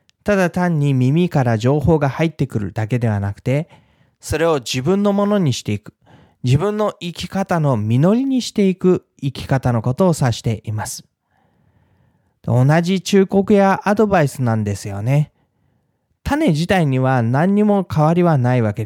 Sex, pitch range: male, 115-170 Hz